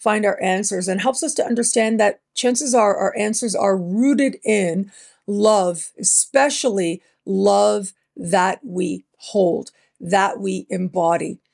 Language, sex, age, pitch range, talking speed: English, female, 50-69, 195-240 Hz, 130 wpm